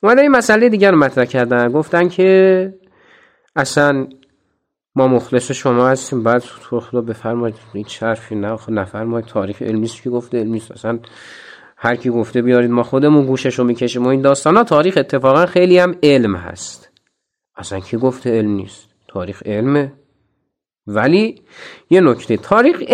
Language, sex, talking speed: Persian, male, 160 wpm